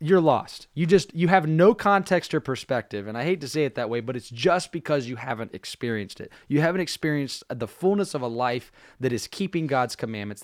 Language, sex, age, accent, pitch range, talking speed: English, male, 20-39, American, 120-160 Hz, 225 wpm